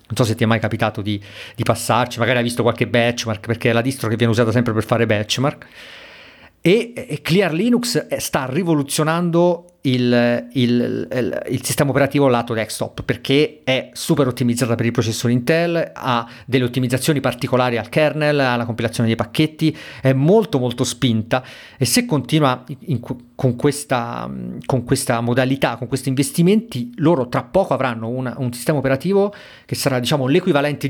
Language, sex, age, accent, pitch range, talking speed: Italian, male, 40-59, native, 120-145 Hz, 170 wpm